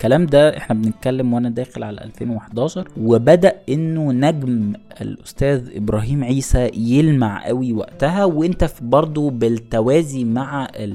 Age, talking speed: 20-39, 120 wpm